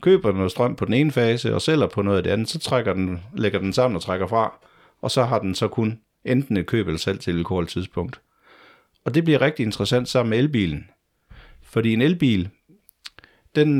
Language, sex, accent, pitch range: Danish, male, native, 90-120 Hz